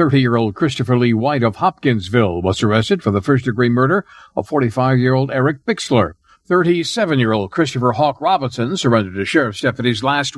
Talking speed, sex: 145 wpm, male